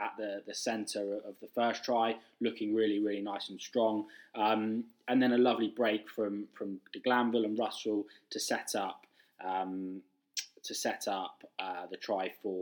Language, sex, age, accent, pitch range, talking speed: English, male, 20-39, British, 105-120 Hz, 175 wpm